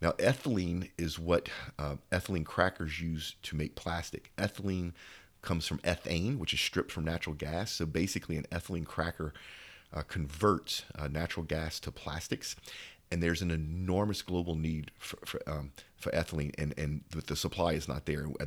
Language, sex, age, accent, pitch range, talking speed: English, male, 40-59, American, 75-95 Hz, 170 wpm